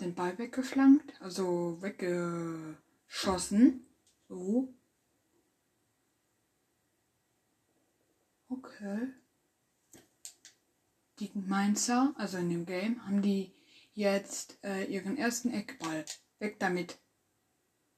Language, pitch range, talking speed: German, 200-255 Hz, 75 wpm